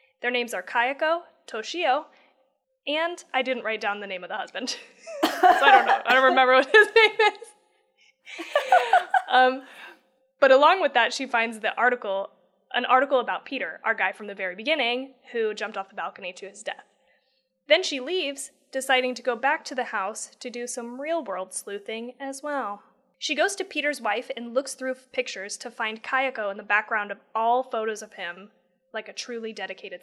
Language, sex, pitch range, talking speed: English, female, 220-270 Hz, 190 wpm